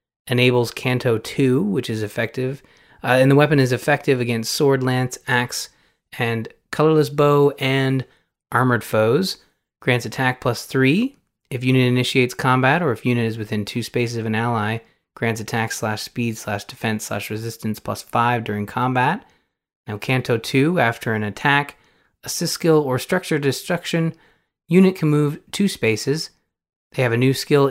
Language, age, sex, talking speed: English, 30-49, male, 160 wpm